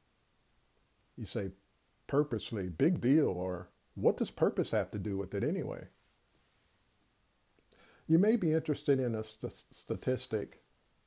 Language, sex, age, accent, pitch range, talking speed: English, male, 50-69, American, 100-130 Hz, 120 wpm